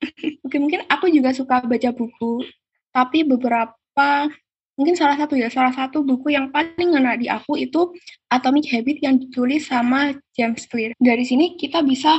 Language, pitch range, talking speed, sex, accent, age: Indonesian, 250-310 Hz, 160 wpm, female, native, 10-29